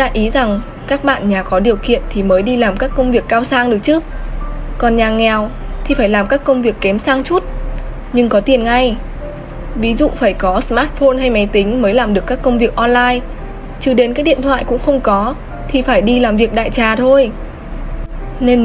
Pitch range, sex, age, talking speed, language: 220-265 Hz, female, 10-29, 215 wpm, Vietnamese